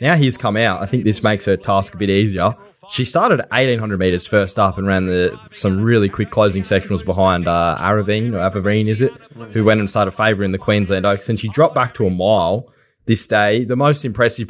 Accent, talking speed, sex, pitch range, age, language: Australian, 225 wpm, male, 90-110 Hz, 10-29, English